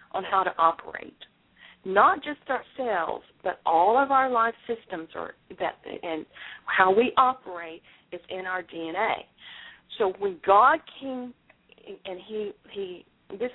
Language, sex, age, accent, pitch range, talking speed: English, female, 50-69, American, 175-255 Hz, 135 wpm